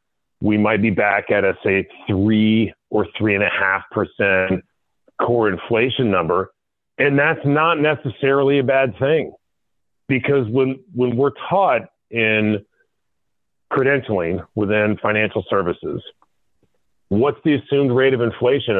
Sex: male